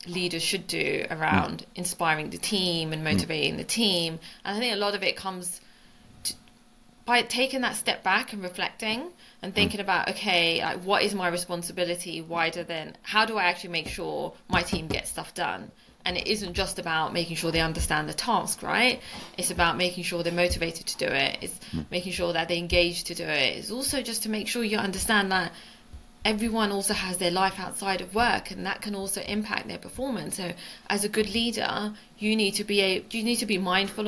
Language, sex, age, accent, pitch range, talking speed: English, female, 20-39, British, 175-215 Hz, 205 wpm